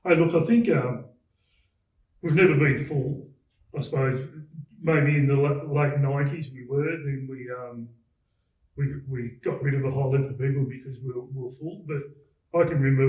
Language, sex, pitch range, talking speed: English, male, 125-145 Hz, 190 wpm